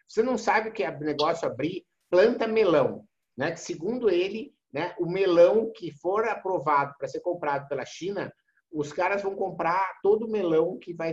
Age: 50-69